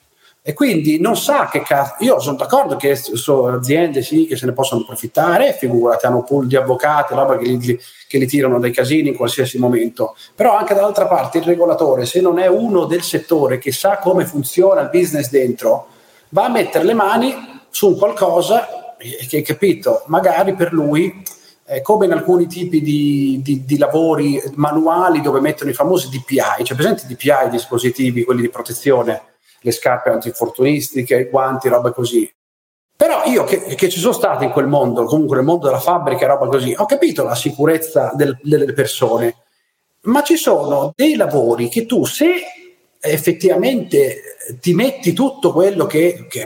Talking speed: 170 wpm